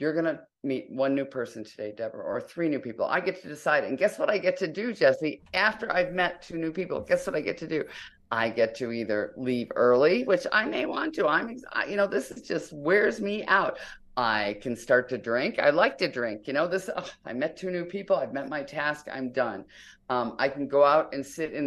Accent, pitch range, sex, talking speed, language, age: American, 125-165 Hz, female, 245 wpm, English, 50-69